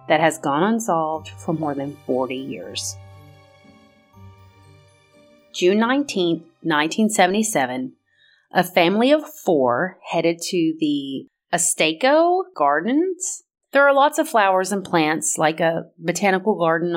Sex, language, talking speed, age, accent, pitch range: female, English, 115 wpm, 30-49, American, 155-225 Hz